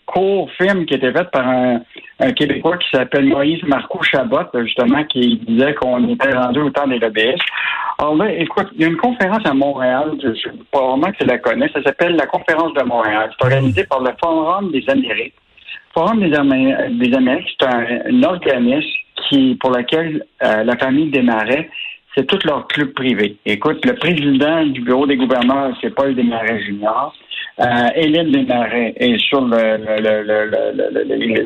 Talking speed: 185 wpm